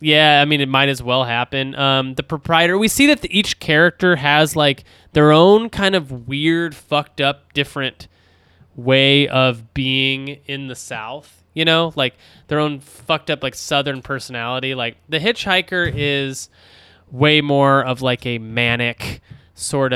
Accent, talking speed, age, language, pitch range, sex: American, 155 wpm, 20-39, English, 120-155 Hz, male